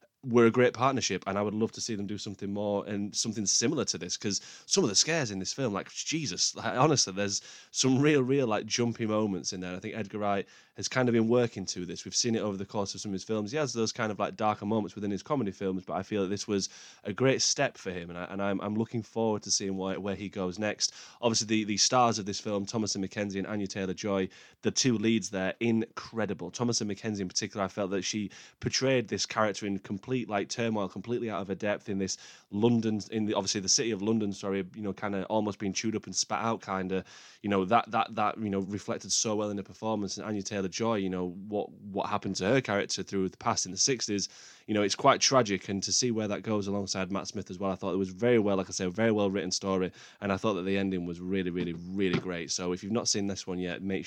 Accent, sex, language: British, male, English